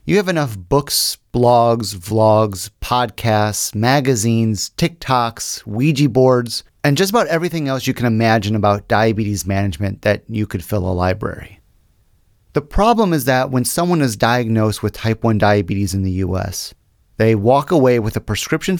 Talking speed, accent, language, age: 155 wpm, American, English, 30-49